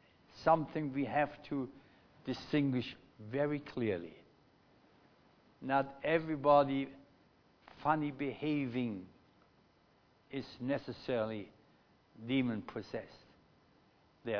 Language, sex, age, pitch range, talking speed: English, male, 60-79, 125-160 Hz, 65 wpm